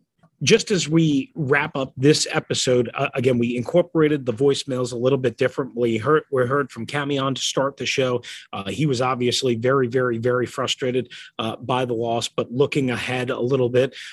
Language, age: English, 30-49